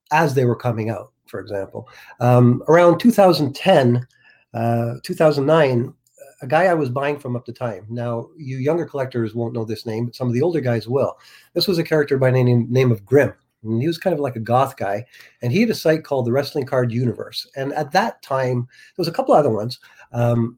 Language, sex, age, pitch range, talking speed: English, male, 50-69, 120-155 Hz, 220 wpm